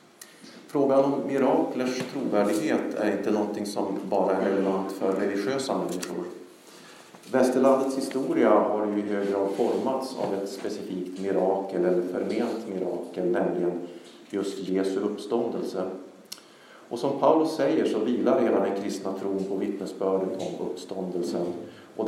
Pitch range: 95-110 Hz